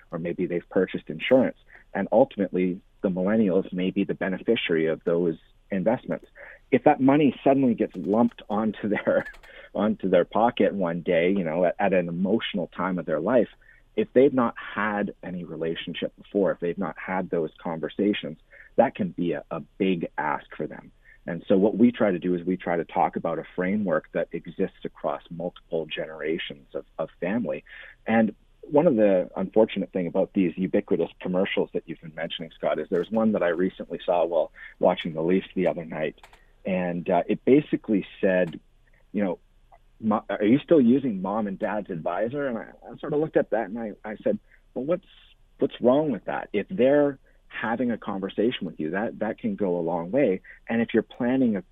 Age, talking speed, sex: 40-59, 190 wpm, male